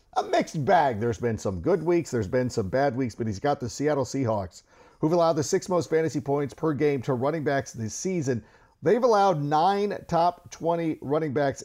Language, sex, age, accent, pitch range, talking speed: English, male, 50-69, American, 125-165 Hz, 205 wpm